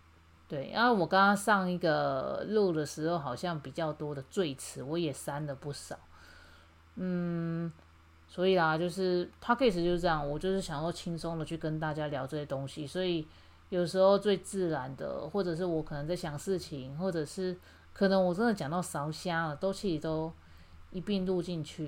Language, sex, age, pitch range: Chinese, female, 30-49, 150-190 Hz